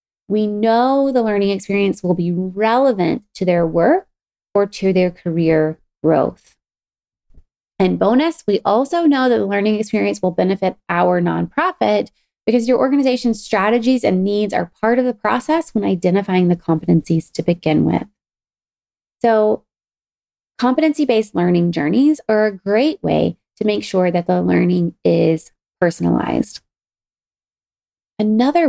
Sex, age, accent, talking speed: female, 20-39, American, 135 wpm